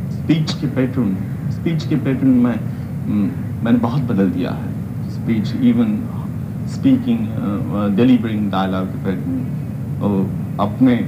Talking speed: 120 wpm